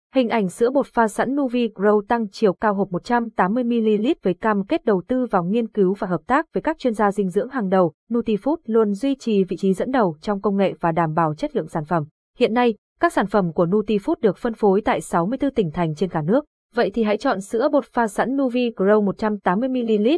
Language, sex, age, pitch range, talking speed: Vietnamese, female, 20-39, 195-240 Hz, 230 wpm